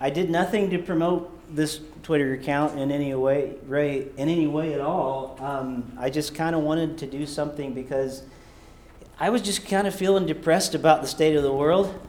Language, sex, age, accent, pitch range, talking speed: English, male, 40-59, American, 125-160 Hz, 200 wpm